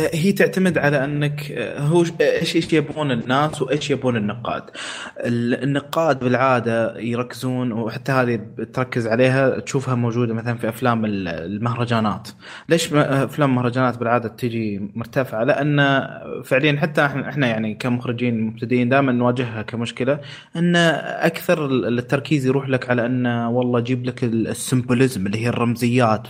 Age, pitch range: 20-39, 120-150 Hz